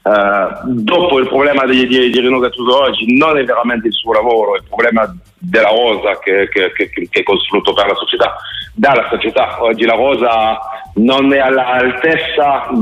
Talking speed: 180 wpm